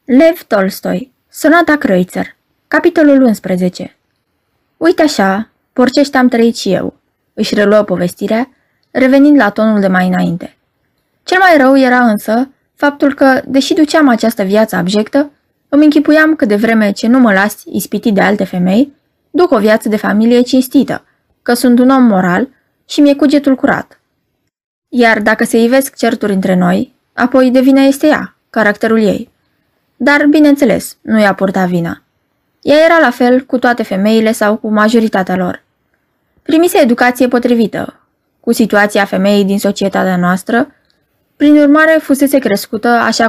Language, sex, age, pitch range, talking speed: Romanian, female, 20-39, 205-275 Hz, 145 wpm